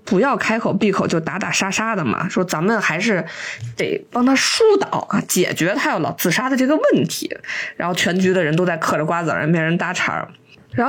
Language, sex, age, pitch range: Chinese, female, 20-39, 175-225 Hz